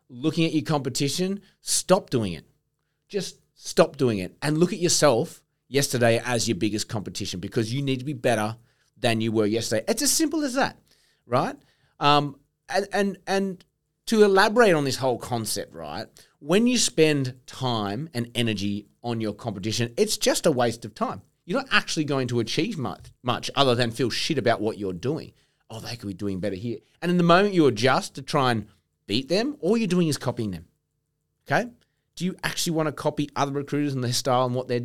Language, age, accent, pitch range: English, 30-49, Australian, 120-160 Hz